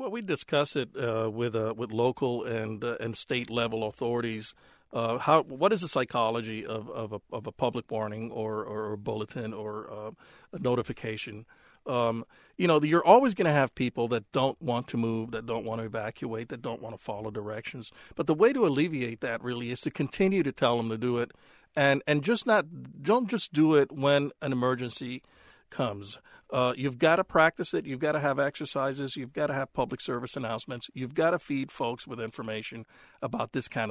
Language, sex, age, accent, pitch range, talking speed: English, male, 50-69, American, 115-145 Hz, 205 wpm